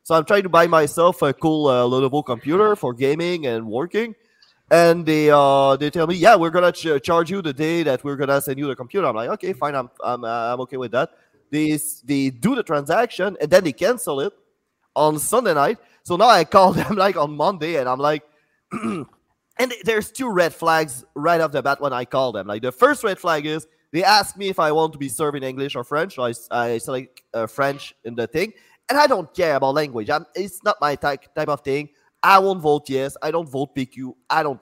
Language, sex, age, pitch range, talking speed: English, male, 30-49, 140-190 Hz, 235 wpm